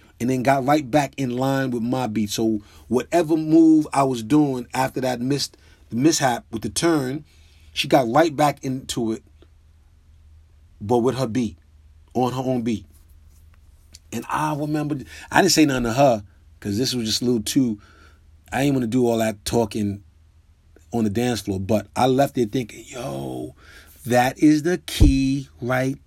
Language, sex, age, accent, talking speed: English, male, 30-49, American, 175 wpm